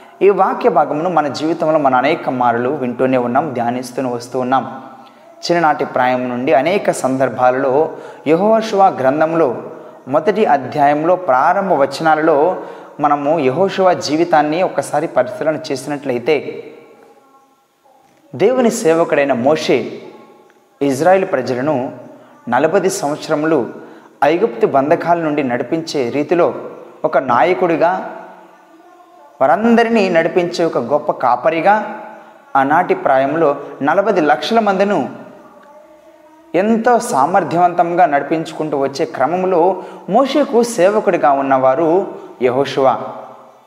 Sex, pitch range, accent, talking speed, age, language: male, 140-205 Hz, native, 85 wpm, 20-39, Telugu